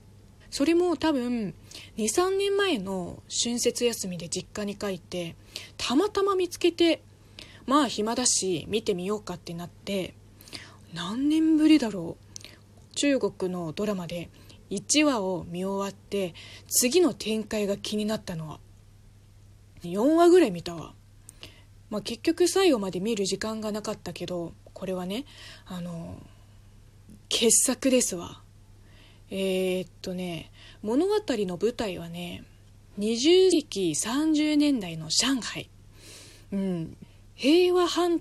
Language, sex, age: Japanese, female, 20-39